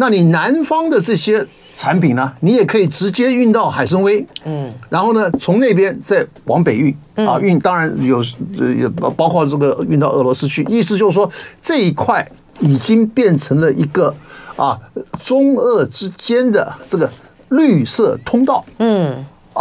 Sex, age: male, 50-69